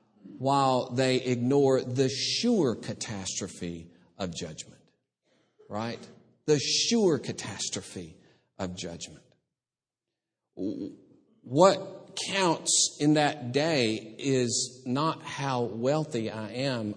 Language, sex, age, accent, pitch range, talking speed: English, male, 50-69, American, 120-170 Hz, 90 wpm